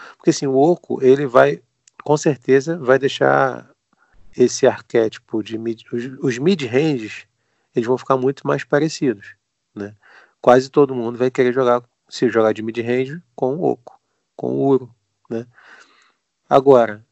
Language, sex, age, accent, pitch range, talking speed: Portuguese, male, 40-59, Brazilian, 120-145 Hz, 145 wpm